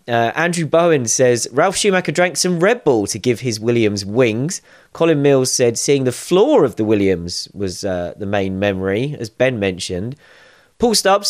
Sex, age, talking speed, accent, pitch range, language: male, 30-49, 180 wpm, British, 115-165 Hz, English